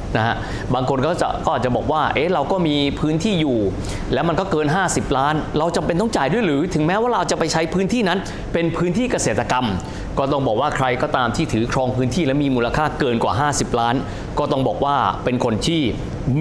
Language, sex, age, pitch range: Thai, male, 20-39, 120-170 Hz